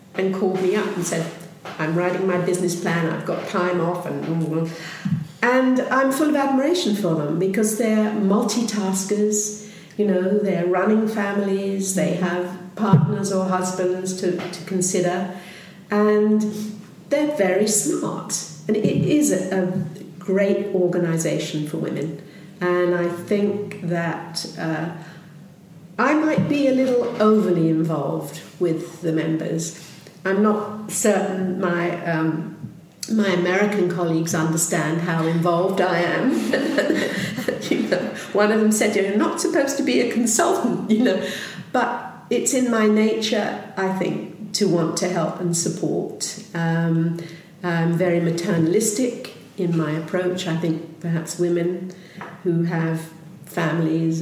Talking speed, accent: 135 wpm, British